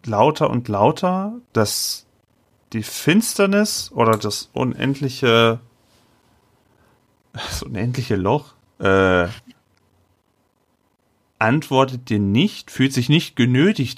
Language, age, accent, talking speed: German, 40-59, German, 80 wpm